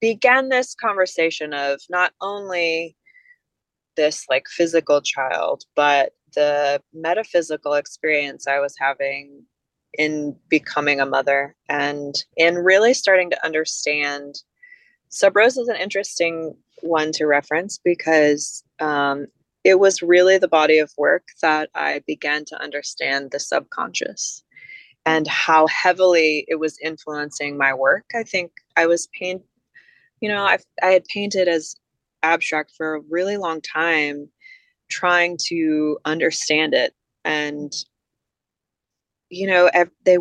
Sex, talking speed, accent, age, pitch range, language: female, 125 wpm, American, 20-39, 150-185 Hz, English